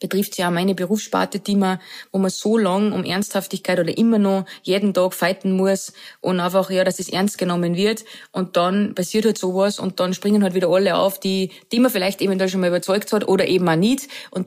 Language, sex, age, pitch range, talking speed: German, female, 20-39, 180-205 Hz, 230 wpm